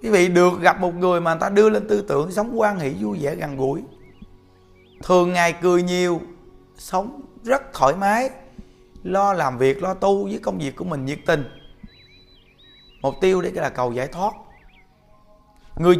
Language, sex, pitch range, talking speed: Vietnamese, male, 140-195 Hz, 180 wpm